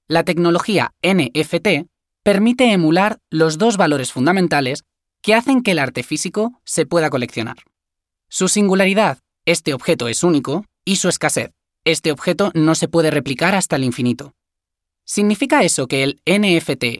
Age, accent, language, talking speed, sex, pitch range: 20-39, Spanish, Spanish, 145 wpm, male, 130-195 Hz